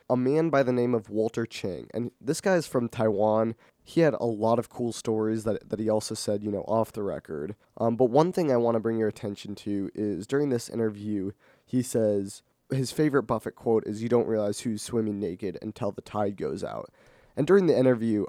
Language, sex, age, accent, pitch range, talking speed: English, male, 20-39, American, 110-130 Hz, 225 wpm